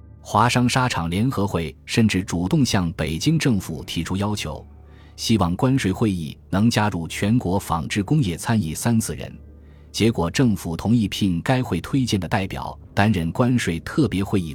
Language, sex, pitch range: Chinese, male, 80-115 Hz